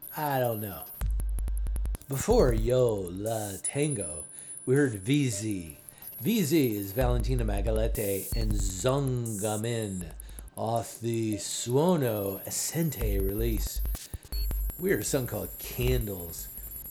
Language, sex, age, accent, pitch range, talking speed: English, male, 50-69, American, 100-140 Hz, 95 wpm